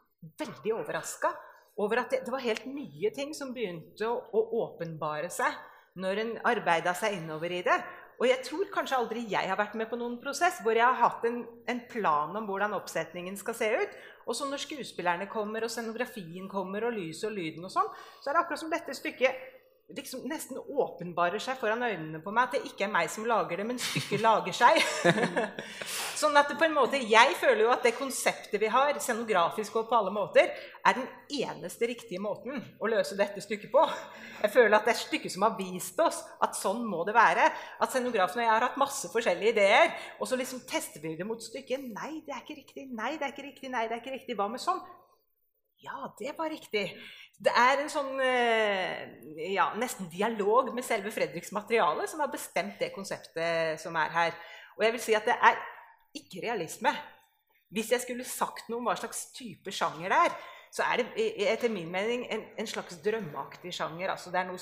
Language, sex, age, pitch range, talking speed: English, female, 30-49, 190-280 Hz, 205 wpm